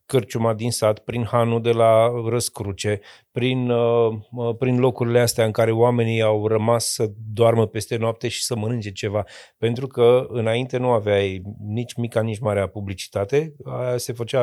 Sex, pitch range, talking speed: male, 110-130 Hz, 160 wpm